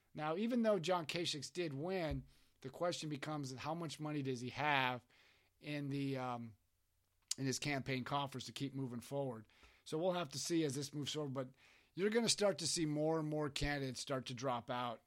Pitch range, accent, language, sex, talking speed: 130-160 Hz, American, English, male, 205 wpm